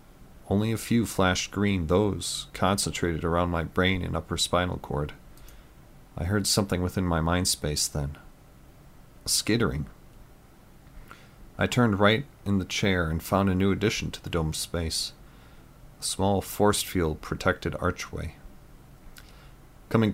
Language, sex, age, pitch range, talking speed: English, male, 40-59, 85-105 Hz, 135 wpm